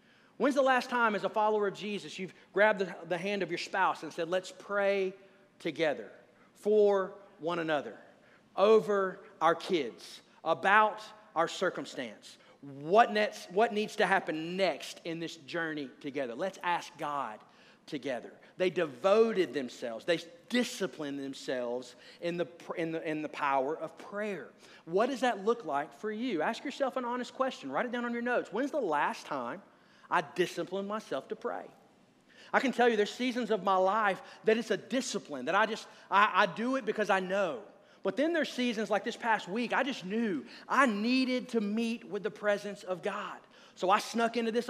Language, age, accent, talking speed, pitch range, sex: English, 40-59, American, 185 wpm, 170-230 Hz, male